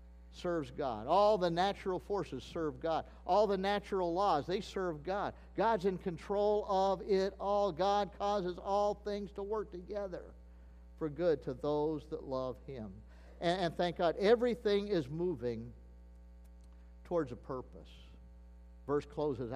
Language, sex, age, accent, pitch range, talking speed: English, male, 50-69, American, 120-190 Hz, 145 wpm